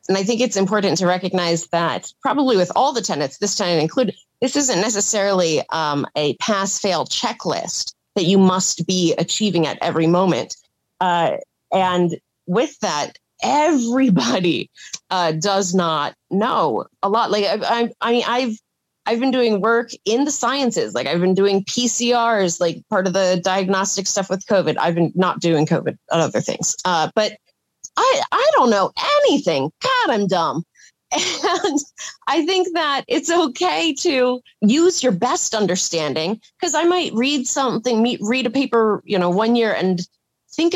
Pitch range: 185-245 Hz